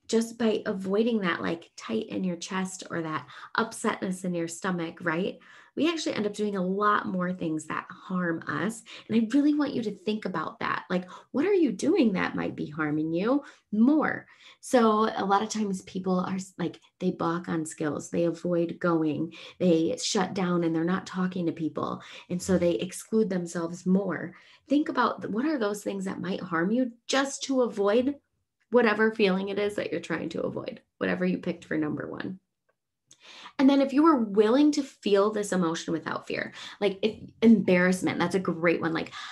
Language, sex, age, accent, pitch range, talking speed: English, female, 20-39, American, 175-230 Hz, 190 wpm